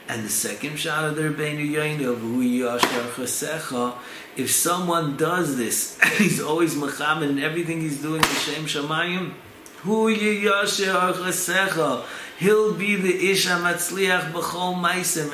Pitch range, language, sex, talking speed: 130-160 Hz, English, male, 120 wpm